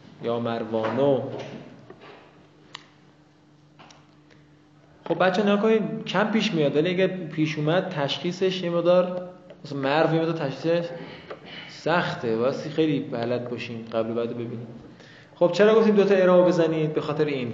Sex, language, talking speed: male, Persian, 125 wpm